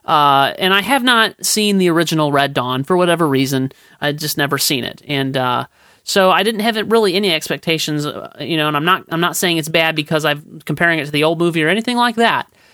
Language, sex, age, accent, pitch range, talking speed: English, male, 40-59, American, 145-180 Hz, 235 wpm